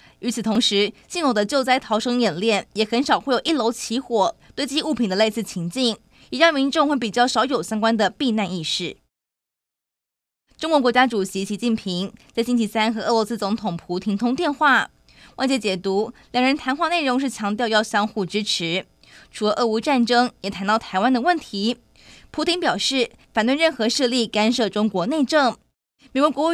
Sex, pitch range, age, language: female, 205-260 Hz, 20-39, Chinese